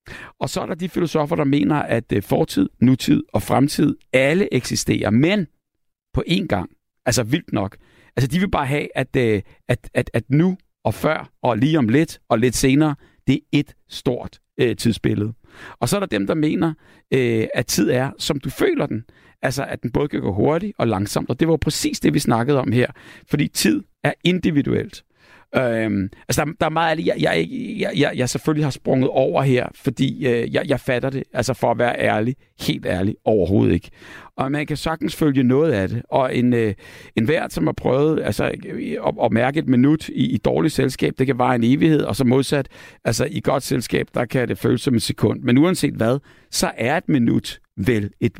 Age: 60-79